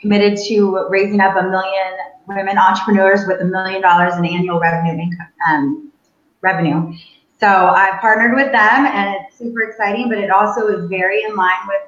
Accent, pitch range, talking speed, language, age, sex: American, 180-230 Hz, 175 wpm, English, 20-39, female